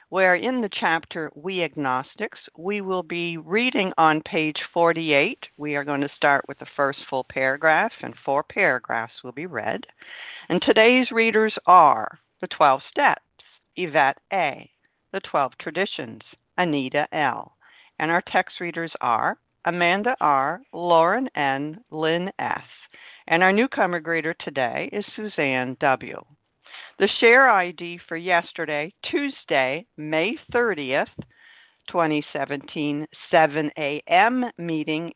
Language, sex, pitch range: English, female, 145-185 Hz